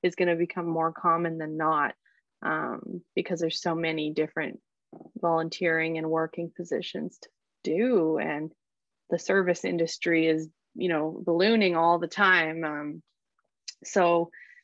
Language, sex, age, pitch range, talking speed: English, female, 20-39, 165-190 Hz, 130 wpm